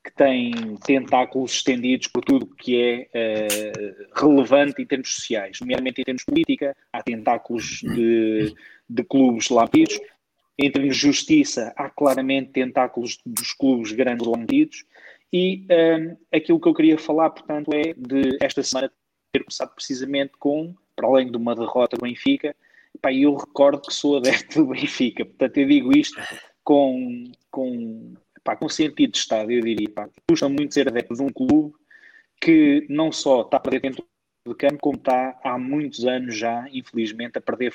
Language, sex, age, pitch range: Portuguese, male, 20-39, 120-165 Hz